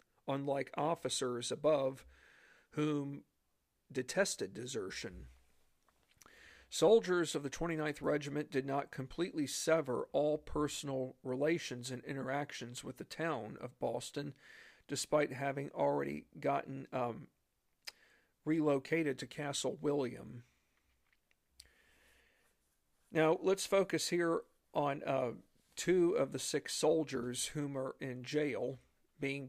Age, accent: 50-69, American